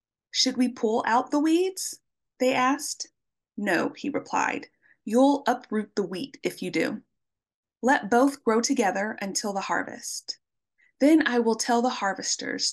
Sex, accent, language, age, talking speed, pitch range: female, American, English, 20-39, 145 wpm, 205-280 Hz